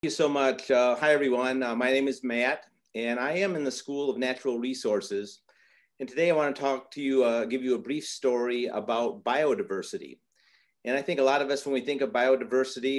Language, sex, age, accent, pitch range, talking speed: English, male, 40-59, American, 130-160 Hz, 225 wpm